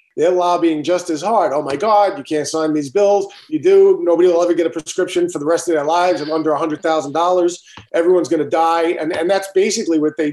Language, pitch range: English, 150-185 Hz